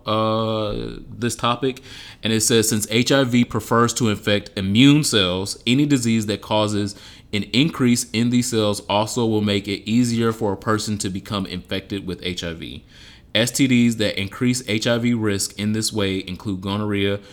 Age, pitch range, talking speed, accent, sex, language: 30-49, 95-110 Hz, 155 wpm, American, male, English